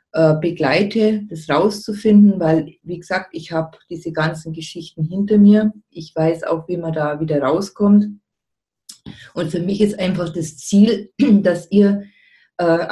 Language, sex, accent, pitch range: German, female, German, 165-200 Hz